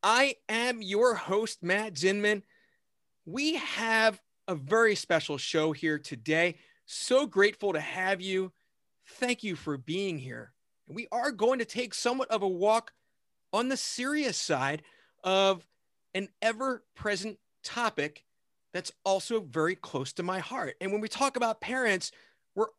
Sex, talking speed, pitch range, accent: male, 145 wpm, 165-235 Hz, American